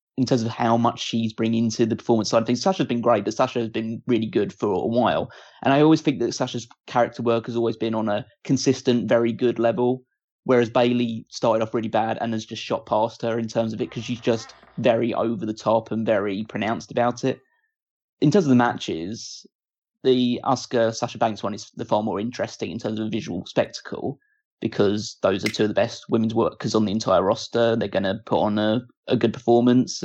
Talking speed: 220 wpm